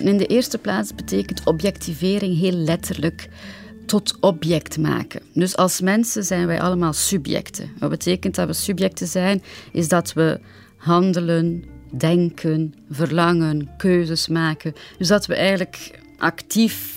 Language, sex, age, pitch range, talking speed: Dutch, female, 30-49, 160-190 Hz, 130 wpm